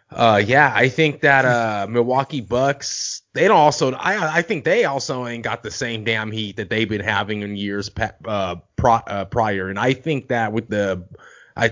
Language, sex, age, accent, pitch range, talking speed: English, male, 30-49, American, 105-135 Hz, 190 wpm